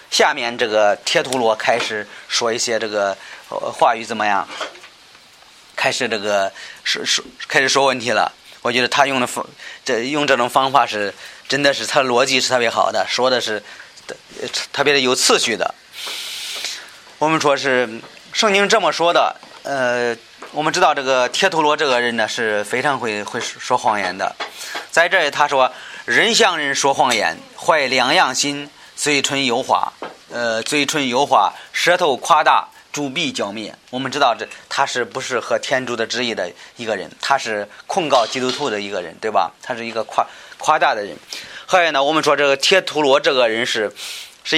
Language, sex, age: Chinese, male, 30-49